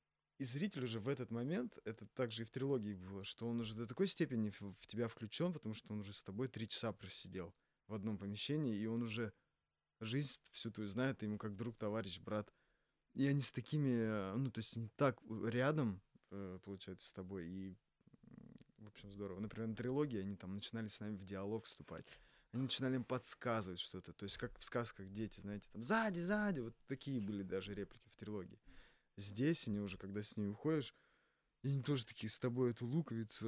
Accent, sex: native, male